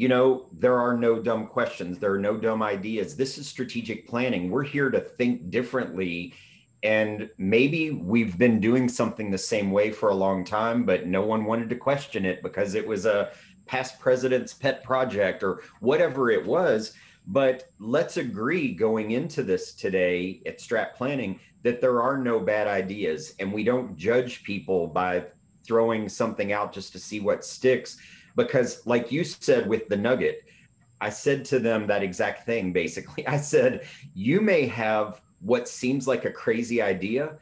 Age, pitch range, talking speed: 30-49, 100-130 Hz, 175 wpm